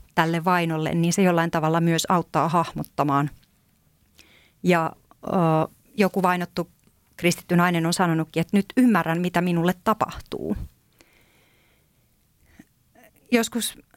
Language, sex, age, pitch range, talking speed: Finnish, female, 30-49, 165-205 Hz, 105 wpm